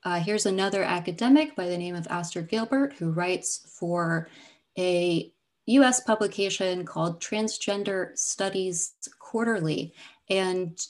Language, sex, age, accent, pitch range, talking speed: English, female, 30-49, American, 170-205 Hz, 115 wpm